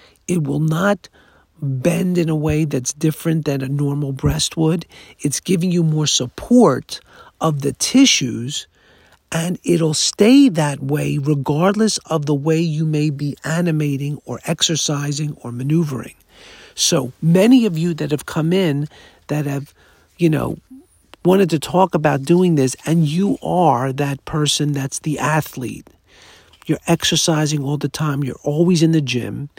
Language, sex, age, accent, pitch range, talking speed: English, male, 50-69, American, 140-170 Hz, 150 wpm